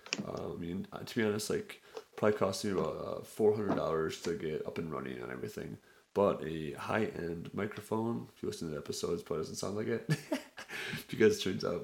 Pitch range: 100-125 Hz